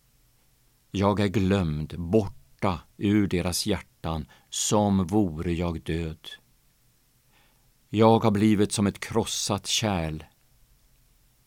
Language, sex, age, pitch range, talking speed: Swedish, male, 50-69, 90-120 Hz, 95 wpm